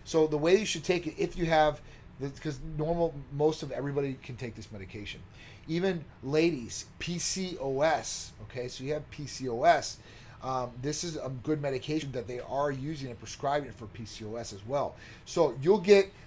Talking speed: 170 wpm